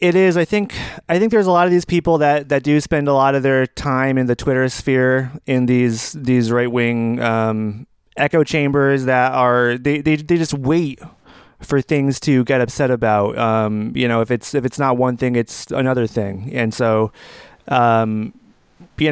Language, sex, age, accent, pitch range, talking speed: English, male, 30-49, American, 120-150 Hz, 200 wpm